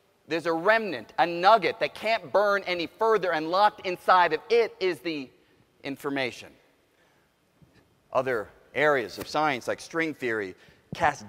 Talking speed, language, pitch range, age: 140 wpm, English, 145-215 Hz, 30-49